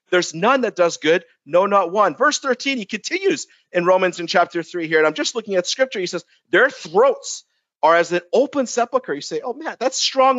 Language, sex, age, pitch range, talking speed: English, male, 50-69, 195-255 Hz, 225 wpm